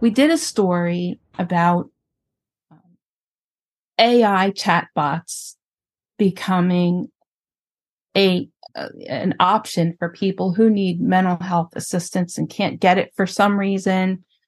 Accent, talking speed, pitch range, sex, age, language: American, 105 wpm, 180-225 Hz, female, 40-59, English